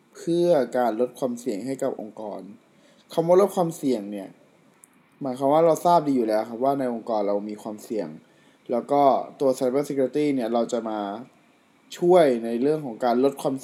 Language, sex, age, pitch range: Thai, male, 20-39, 115-140 Hz